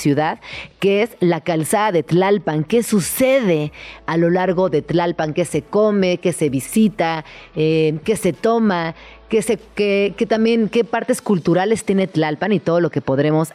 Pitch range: 165-220 Hz